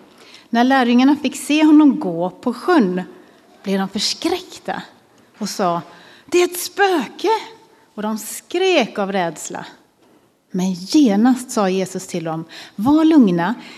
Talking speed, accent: 130 wpm, native